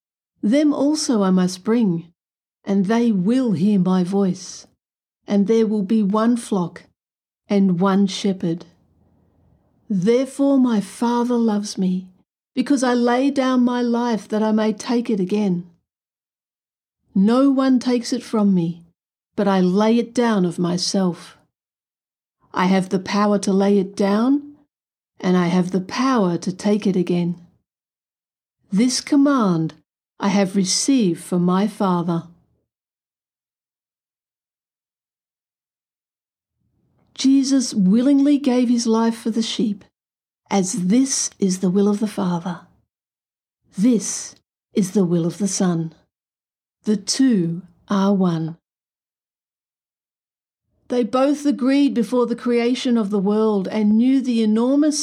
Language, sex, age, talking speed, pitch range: English, female, 50-69, 125 wpm, 185-245 Hz